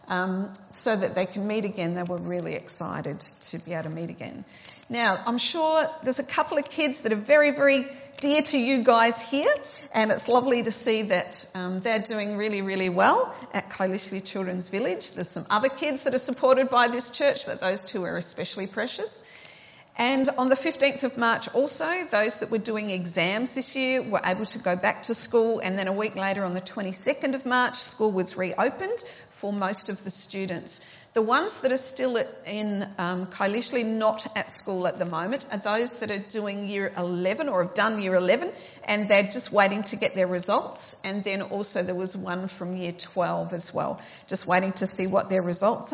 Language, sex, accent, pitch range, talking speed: English, female, Australian, 185-260 Hz, 205 wpm